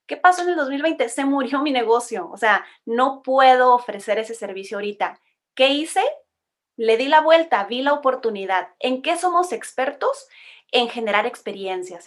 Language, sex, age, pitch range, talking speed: Spanish, female, 30-49, 200-275 Hz, 165 wpm